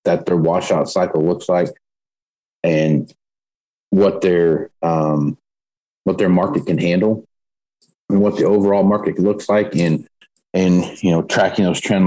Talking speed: 145 wpm